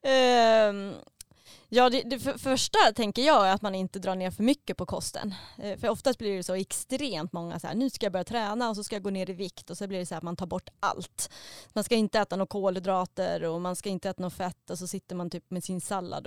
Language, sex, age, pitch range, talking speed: Swedish, female, 20-39, 180-215 Hz, 270 wpm